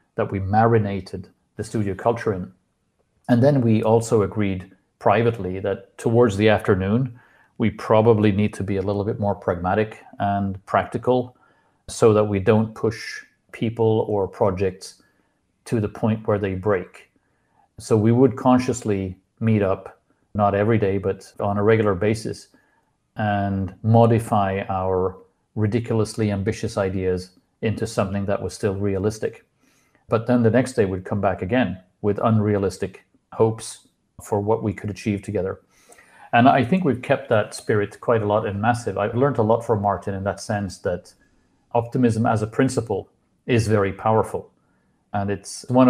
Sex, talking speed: male, 155 wpm